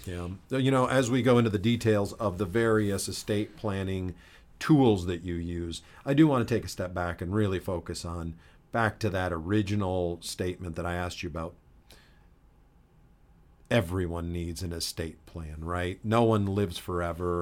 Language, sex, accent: English, male, American